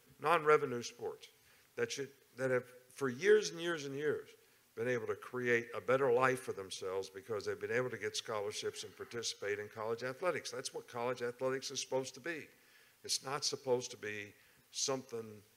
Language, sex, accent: English, male, American